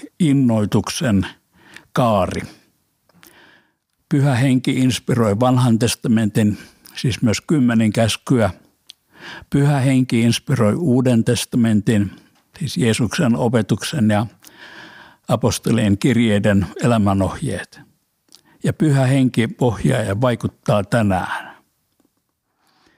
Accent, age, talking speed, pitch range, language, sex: native, 60-79, 80 wpm, 105-130 Hz, Finnish, male